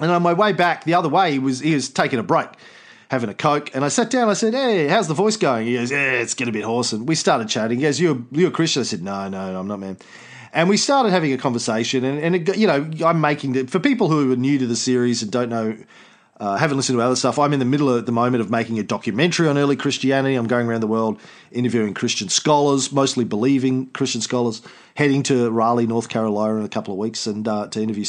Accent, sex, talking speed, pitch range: Australian, male, 270 wpm, 115-185 Hz